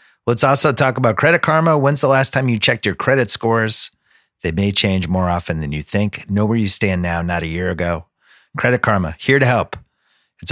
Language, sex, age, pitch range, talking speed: English, male, 30-49, 90-120 Hz, 215 wpm